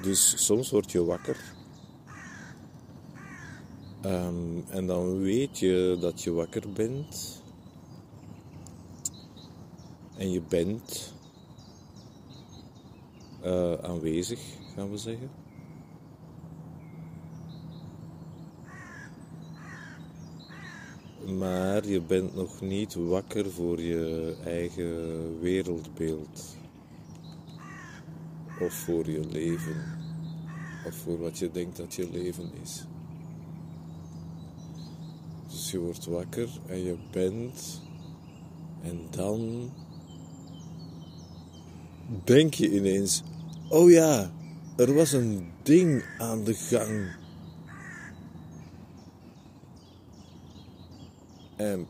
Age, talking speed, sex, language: 50-69, 75 wpm, male, Dutch